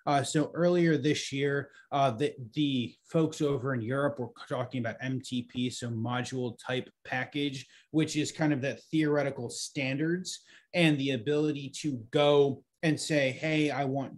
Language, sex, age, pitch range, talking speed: English, male, 30-49, 125-150 Hz, 155 wpm